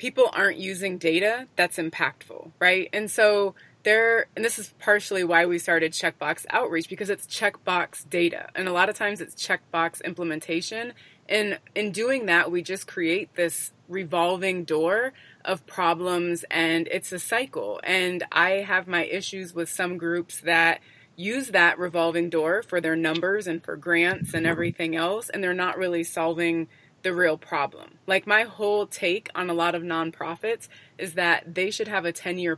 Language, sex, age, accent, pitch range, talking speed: English, female, 20-39, American, 165-195 Hz, 170 wpm